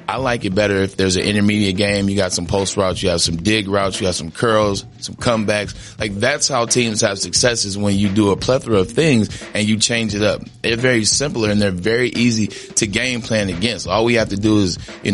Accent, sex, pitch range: American, male, 100-120 Hz